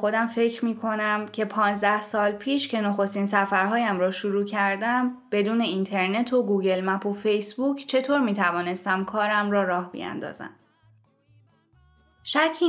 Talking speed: 130 wpm